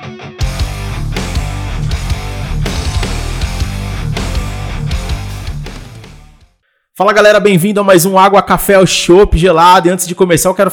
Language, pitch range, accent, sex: Portuguese, 130-170 Hz, Brazilian, male